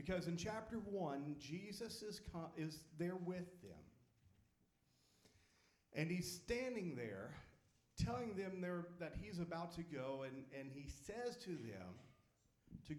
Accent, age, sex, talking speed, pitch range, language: American, 50-69, male, 135 wpm, 120-180 Hz, English